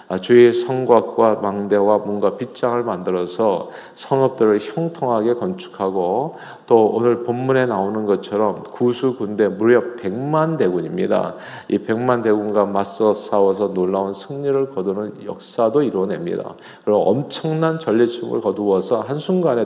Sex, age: male, 40-59